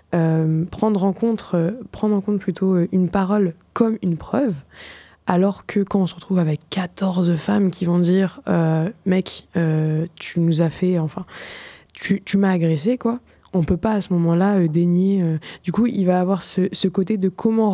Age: 20-39